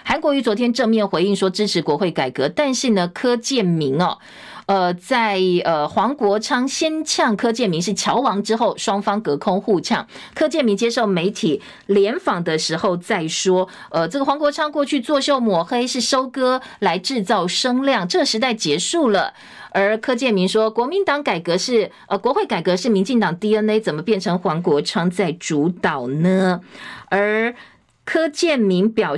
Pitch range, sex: 185-260 Hz, female